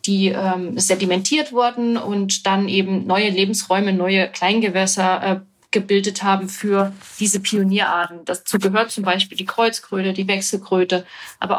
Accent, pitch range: German, 190-235 Hz